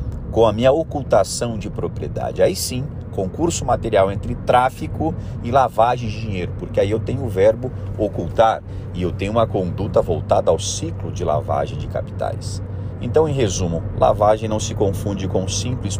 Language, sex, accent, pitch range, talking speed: Portuguese, male, Brazilian, 95-115 Hz, 170 wpm